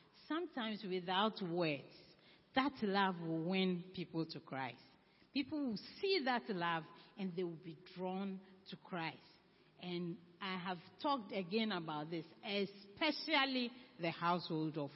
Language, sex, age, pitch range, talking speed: English, female, 40-59, 185-265 Hz, 130 wpm